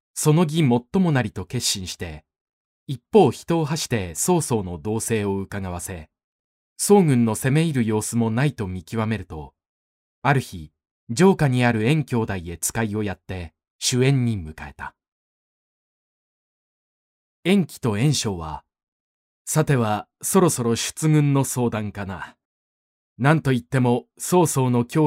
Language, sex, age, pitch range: Japanese, male, 20-39, 90-140 Hz